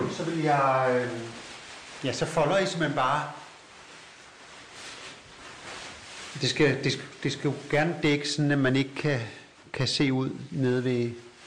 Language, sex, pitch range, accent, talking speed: Danish, male, 115-135 Hz, native, 145 wpm